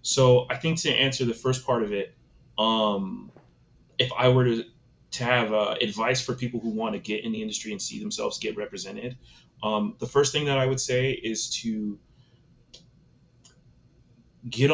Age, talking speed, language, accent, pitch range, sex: 30-49, 180 wpm, English, American, 110-130 Hz, male